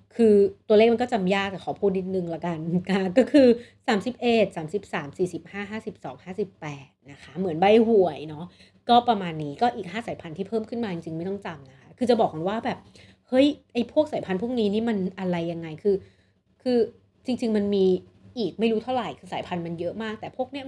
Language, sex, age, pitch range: Thai, female, 30-49, 165-230 Hz